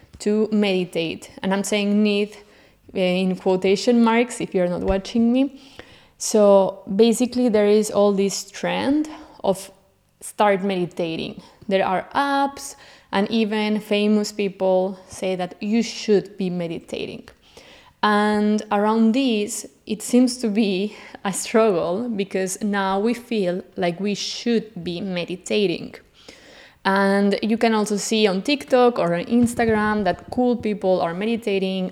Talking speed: 130 wpm